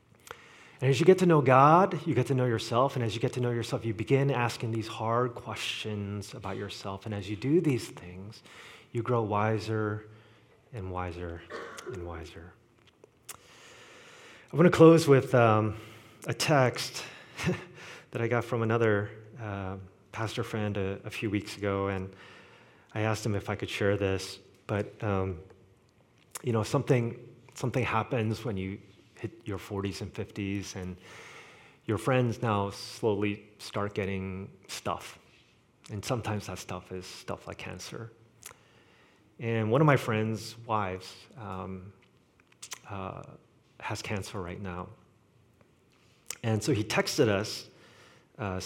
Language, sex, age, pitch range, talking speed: English, male, 30-49, 100-120 Hz, 145 wpm